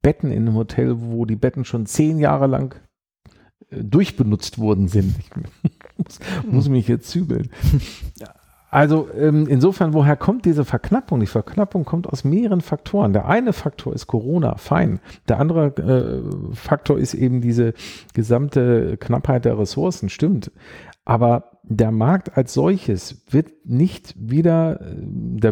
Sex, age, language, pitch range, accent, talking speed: male, 50-69, German, 110-150 Hz, German, 135 wpm